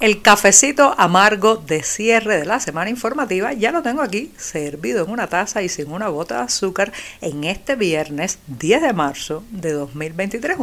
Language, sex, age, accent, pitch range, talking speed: Spanish, female, 50-69, American, 165-225 Hz, 175 wpm